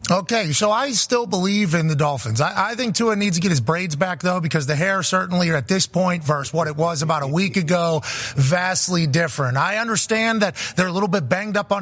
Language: English